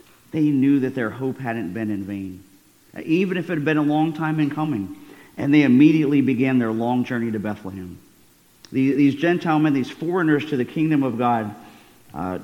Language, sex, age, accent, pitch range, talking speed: English, male, 50-69, American, 115-145 Hz, 190 wpm